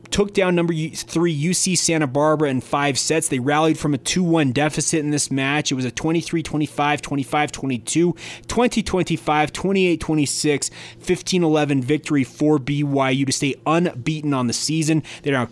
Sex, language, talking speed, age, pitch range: male, English, 145 wpm, 30-49, 130-155 Hz